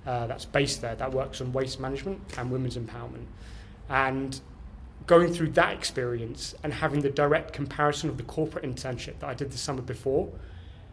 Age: 20-39